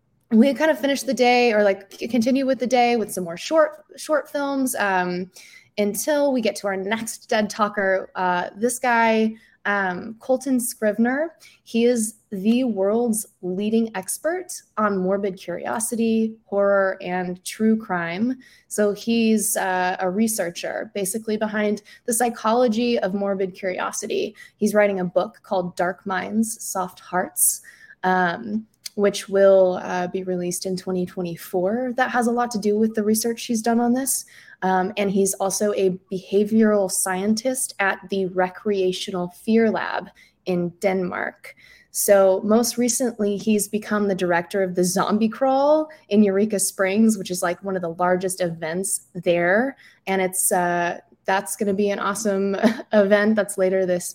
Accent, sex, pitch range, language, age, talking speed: American, female, 185-230 Hz, English, 20-39, 150 wpm